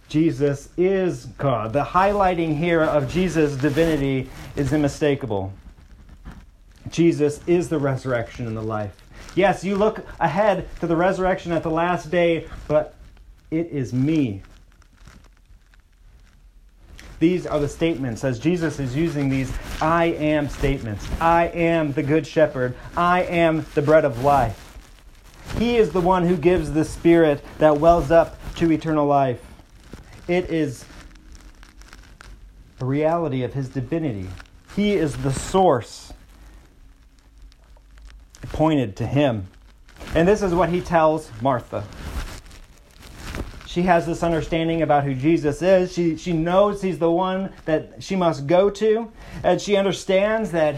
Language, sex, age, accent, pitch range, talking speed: English, male, 30-49, American, 120-170 Hz, 135 wpm